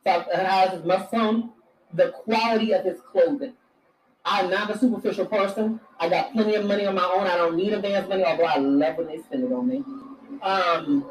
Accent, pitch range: American, 190-260 Hz